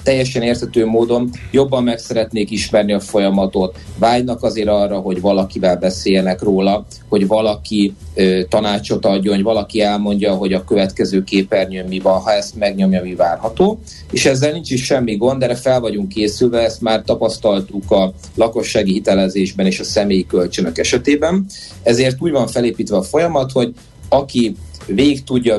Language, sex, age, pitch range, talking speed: Hungarian, male, 30-49, 95-120 Hz, 150 wpm